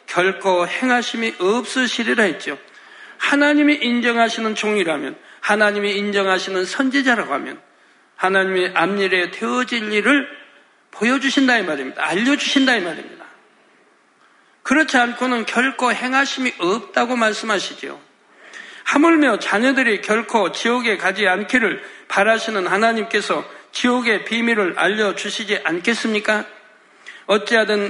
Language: Korean